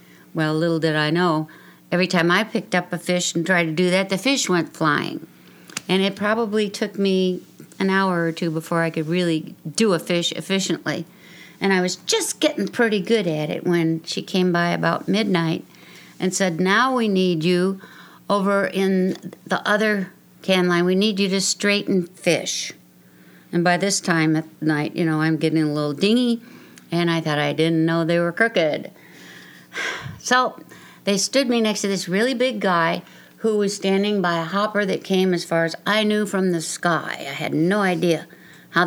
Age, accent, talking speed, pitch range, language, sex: 60-79, American, 190 wpm, 170-200 Hz, English, female